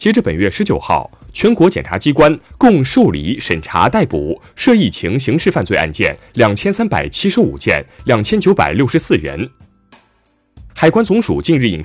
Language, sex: Chinese, male